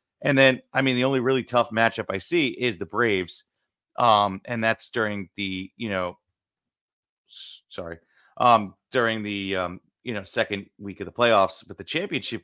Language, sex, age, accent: English, male, 30-49, American